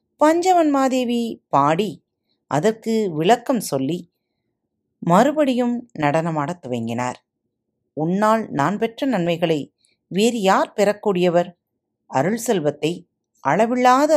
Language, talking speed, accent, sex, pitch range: Tamil, 75 wpm, native, female, 155-255 Hz